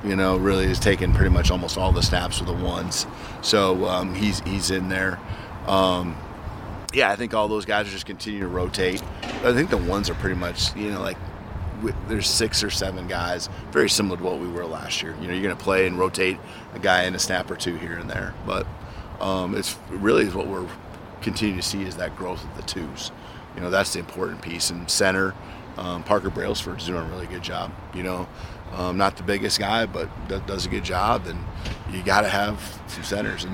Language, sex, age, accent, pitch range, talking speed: English, male, 30-49, American, 90-105 Hz, 225 wpm